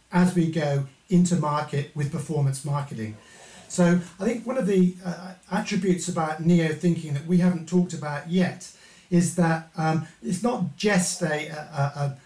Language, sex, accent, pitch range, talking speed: English, male, British, 145-180 Hz, 160 wpm